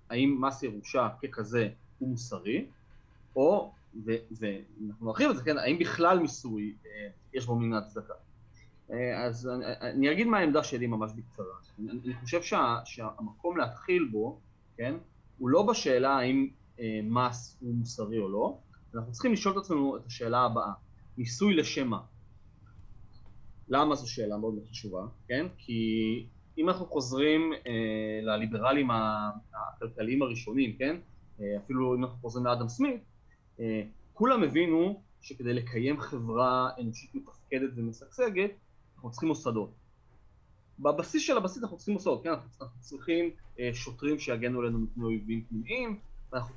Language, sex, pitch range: Hebrew, male, 115-140 Hz